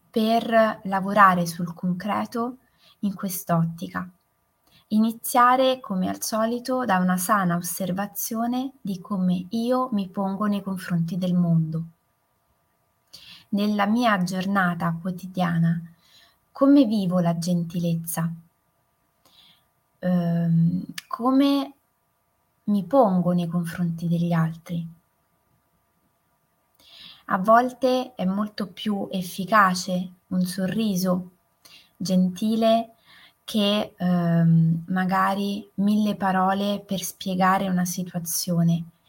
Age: 20-39